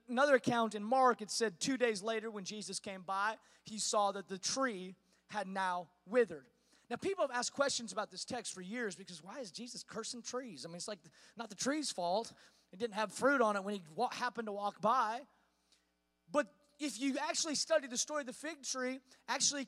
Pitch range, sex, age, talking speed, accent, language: 220-290 Hz, male, 30-49, 205 wpm, American, English